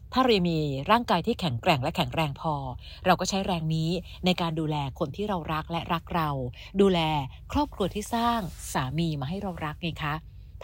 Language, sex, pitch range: Thai, female, 145-200 Hz